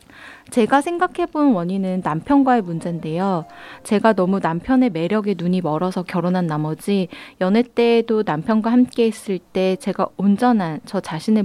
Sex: female